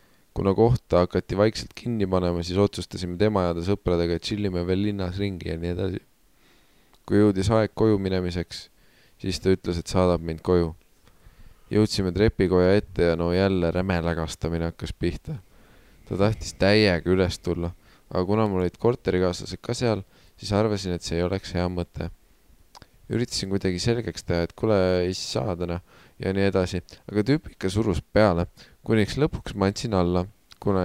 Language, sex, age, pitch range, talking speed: English, male, 20-39, 90-105 Hz, 160 wpm